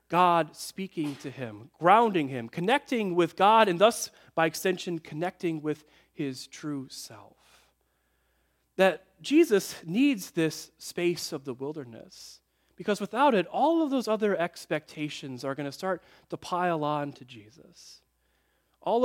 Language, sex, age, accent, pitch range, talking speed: English, male, 30-49, American, 150-215 Hz, 140 wpm